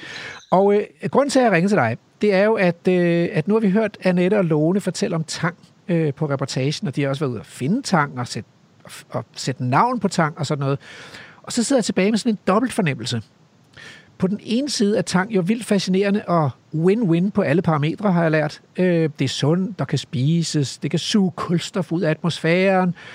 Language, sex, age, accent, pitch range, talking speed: Danish, male, 60-79, native, 155-200 Hz, 235 wpm